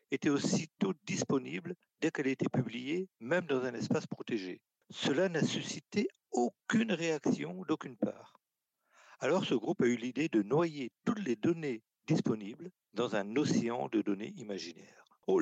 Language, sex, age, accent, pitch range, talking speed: French, male, 50-69, French, 130-195 Hz, 150 wpm